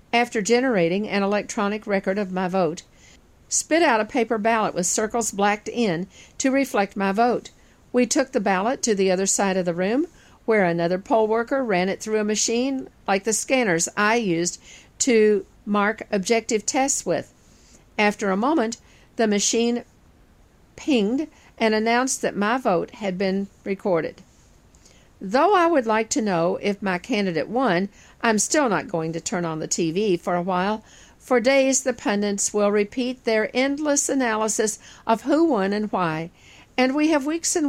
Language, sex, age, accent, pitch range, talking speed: English, female, 50-69, American, 195-240 Hz, 170 wpm